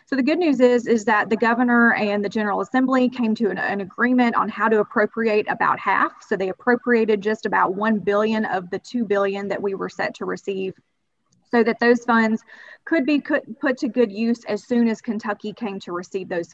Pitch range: 195-235 Hz